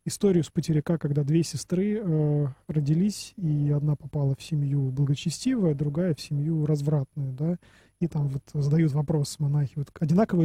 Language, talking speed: Russian, 155 wpm